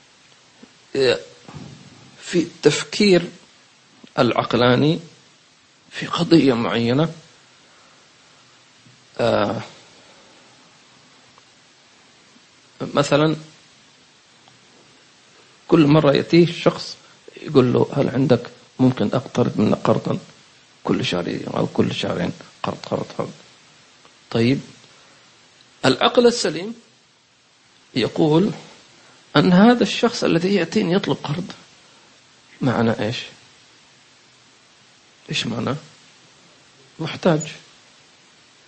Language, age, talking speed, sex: English, 40-59, 65 wpm, male